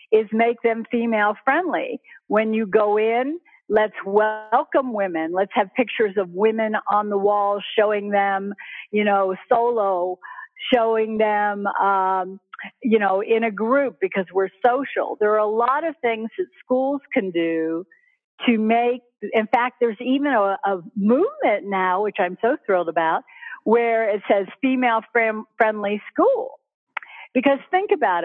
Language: English